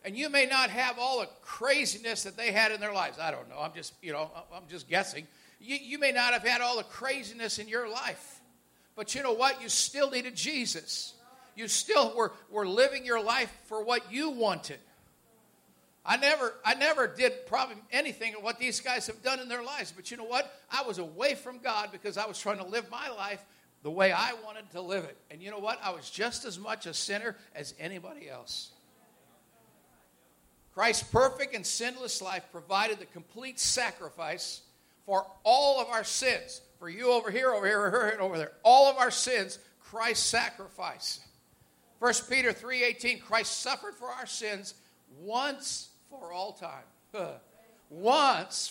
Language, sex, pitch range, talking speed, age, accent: English, male, 195-255 Hz, 185 wpm, 50-69, American